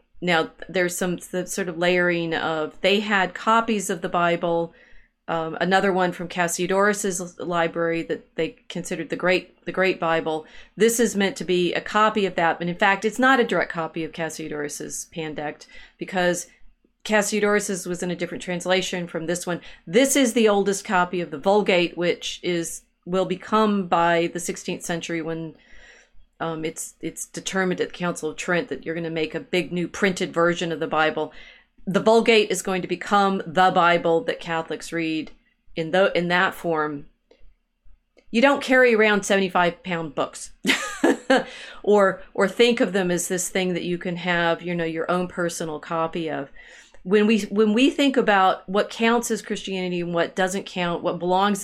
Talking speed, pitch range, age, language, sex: 180 wpm, 170-200 Hz, 40-59, English, female